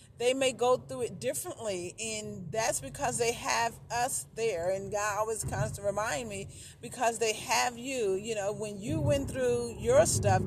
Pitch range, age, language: 195-245 Hz, 40-59, English